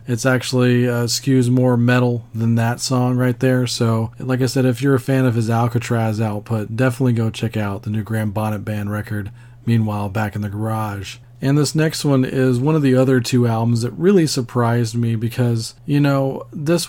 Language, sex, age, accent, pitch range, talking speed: English, male, 40-59, American, 115-130 Hz, 205 wpm